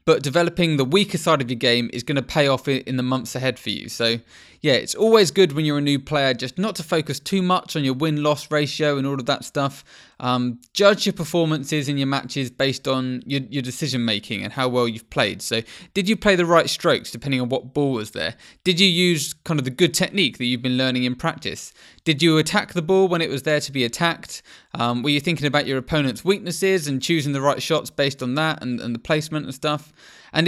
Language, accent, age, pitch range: English, British, 20-39, 125-165 Hz